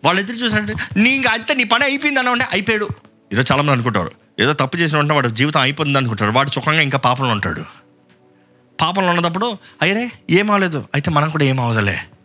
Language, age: Telugu, 30-49